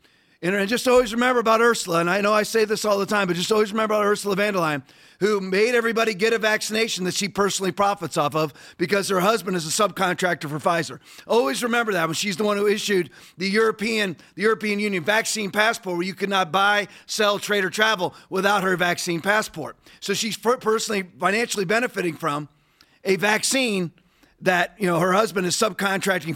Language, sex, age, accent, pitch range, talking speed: English, male, 40-59, American, 185-225 Hz, 200 wpm